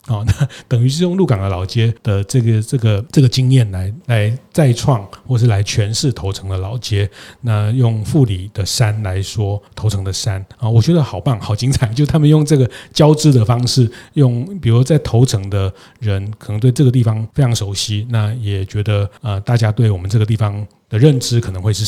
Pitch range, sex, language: 105-130 Hz, male, Chinese